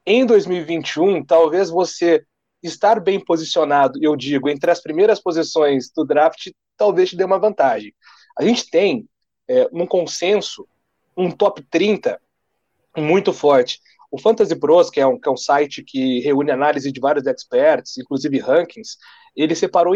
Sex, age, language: male, 40-59, Portuguese